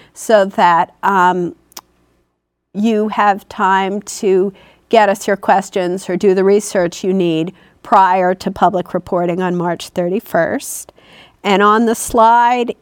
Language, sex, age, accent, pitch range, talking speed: English, female, 50-69, American, 185-215 Hz, 130 wpm